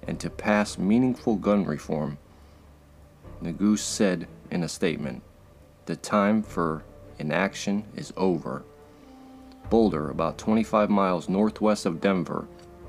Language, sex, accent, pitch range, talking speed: English, male, American, 80-105 Hz, 110 wpm